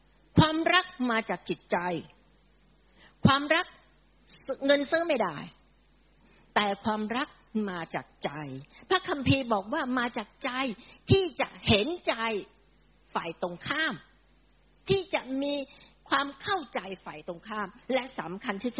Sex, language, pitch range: female, Thai, 180-250 Hz